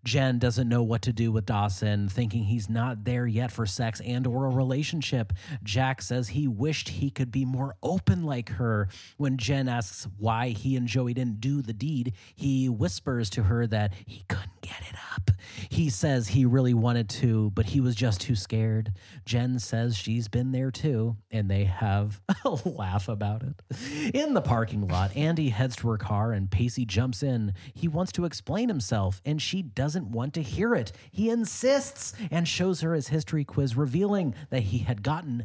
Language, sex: English, male